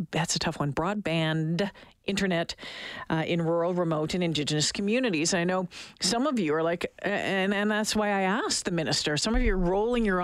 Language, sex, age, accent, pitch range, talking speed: English, female, 40-59, American, 170-225 Hz, 200 wpm